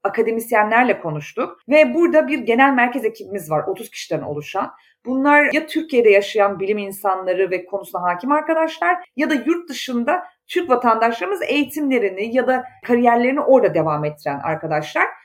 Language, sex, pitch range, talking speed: Turkish, female, 185-305 Hz, 140 wpm